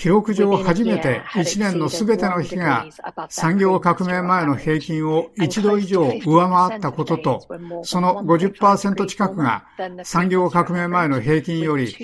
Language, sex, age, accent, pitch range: Japanese, male, 50-69, native, 150-190 Hz